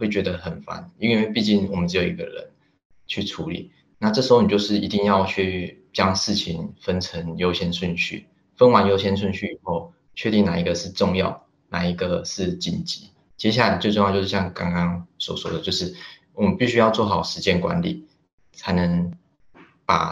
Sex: male